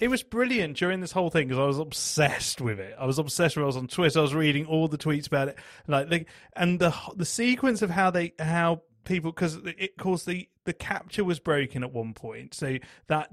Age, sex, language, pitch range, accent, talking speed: 30-49, male, English, 140-190 Hz, British, 240 wpm